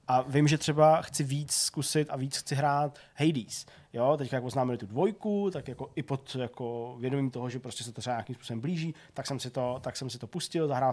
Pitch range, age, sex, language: 125-150 Hz, 20-39, male, Czech